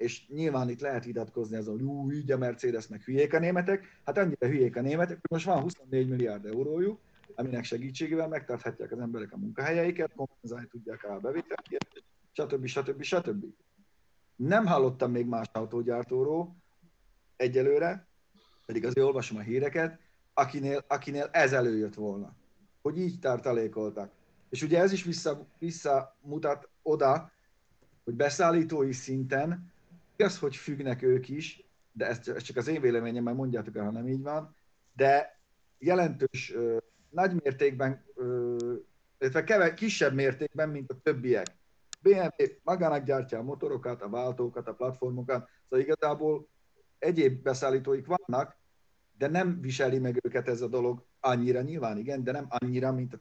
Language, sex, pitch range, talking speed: Hungarian, male, 120-160 Hz, 140 wpm